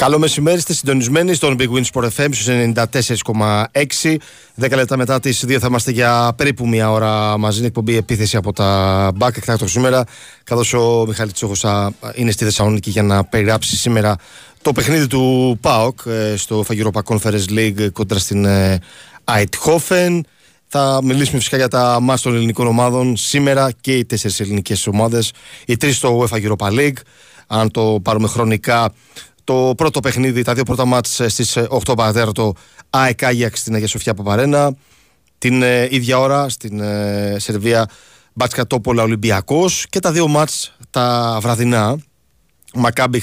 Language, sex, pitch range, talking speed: Greek, male, 110-130 Hz, 145 wpm